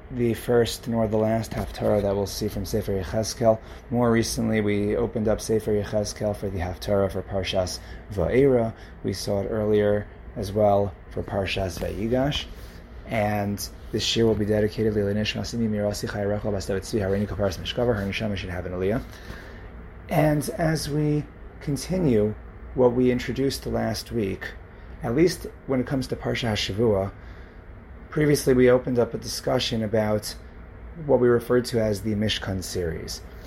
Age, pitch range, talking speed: 30-49, 95-120 Hz, 130 wpm